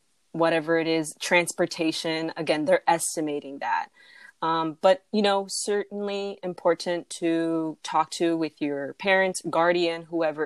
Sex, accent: female, American